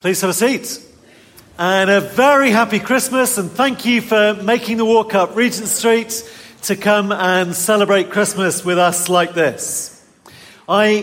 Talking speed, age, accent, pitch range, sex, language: 160 wpm, 40-59, British, 180-230 Hz, male, English